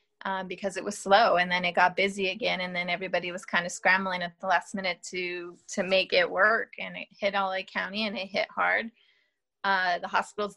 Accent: American